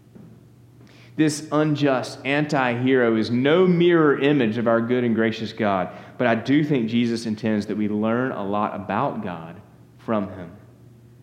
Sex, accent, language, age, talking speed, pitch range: male, American, English, 30-49, 150 wpm, 110-140 Hz